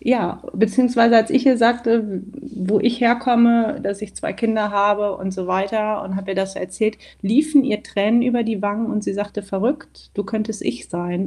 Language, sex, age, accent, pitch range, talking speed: German, female, 30-49, German, 185-220 Hz, 190 wpm